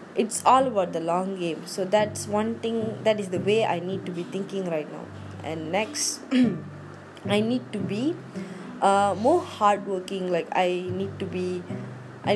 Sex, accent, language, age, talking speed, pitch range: female, Indian, English, 20-39, 175 wpm, 170-205 Hz